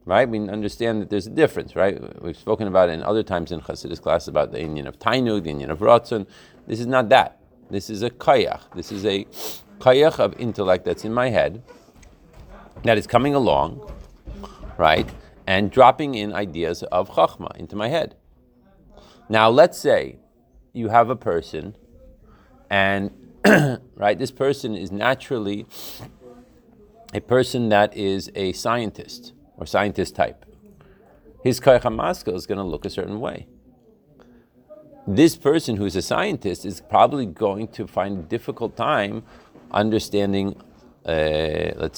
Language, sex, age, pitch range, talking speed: English, male, 40-59, 95-120 Hz, 155 wpm